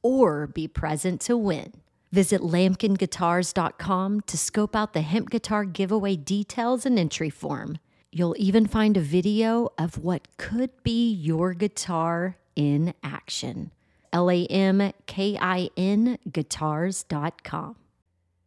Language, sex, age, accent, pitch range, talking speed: English, female, 40-59, American, 165-215 Hz, 105 wpm